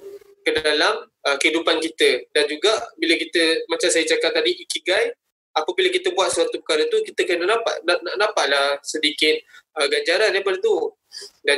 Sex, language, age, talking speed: male, Malay, 20-39, 165 wpm